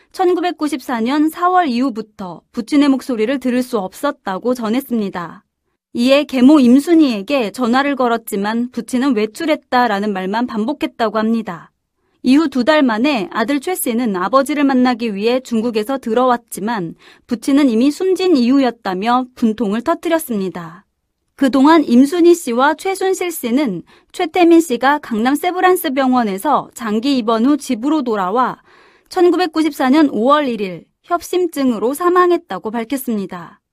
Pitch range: 235-325 Hz